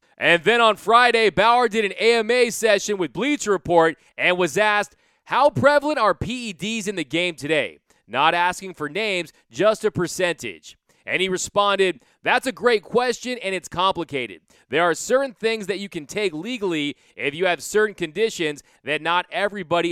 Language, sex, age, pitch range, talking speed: English, male, 30-49, 170-225 Hz, 170 wpm